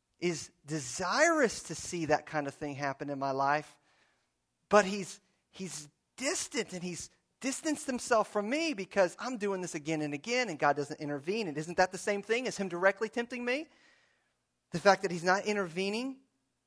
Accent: American